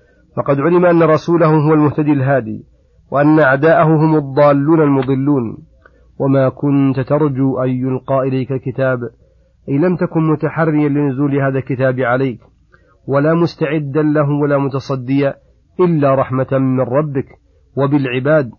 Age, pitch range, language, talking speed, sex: 40-59, 130-150 Hz, Arabic, 120 wpm, male